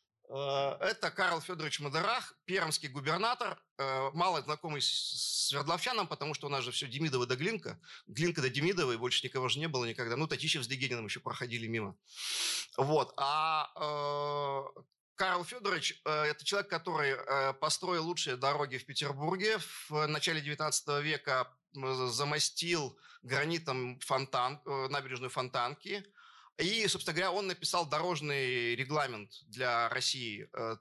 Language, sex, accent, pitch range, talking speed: Russian, male, native, 135-175 Hz, 135 wpm